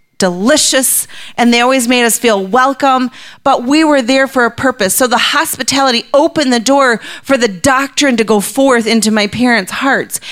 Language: English